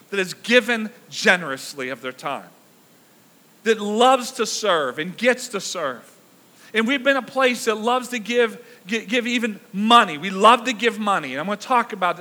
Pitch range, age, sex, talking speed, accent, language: 185-230 Hz, 40-59, male, 180 wpm, American, English